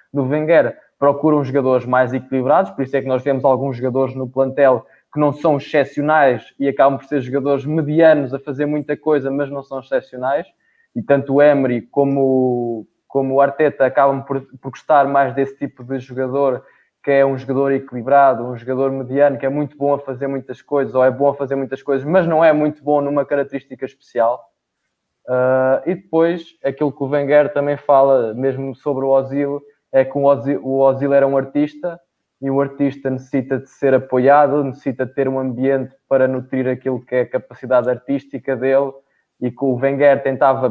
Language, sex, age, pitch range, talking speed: Portuguese, male, 20-39, 130-145 Hz, 185 wpm